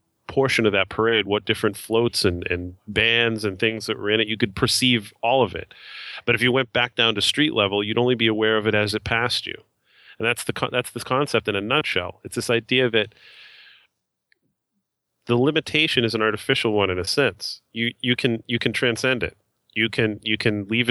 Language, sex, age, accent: English, male, 30-49, American